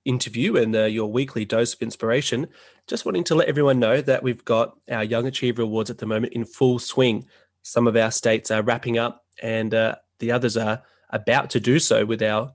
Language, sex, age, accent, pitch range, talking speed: English, male, 20-39, Australian, 110-130 Hz, 215 wpm